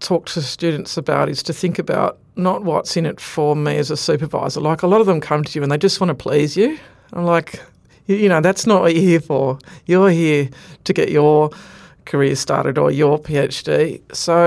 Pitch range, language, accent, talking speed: 145-175 Hz, English, Australian, 220 wpm